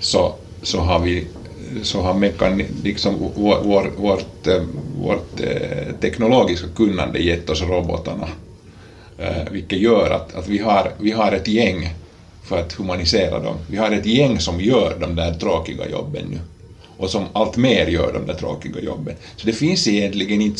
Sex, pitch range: male, 90-105 Hz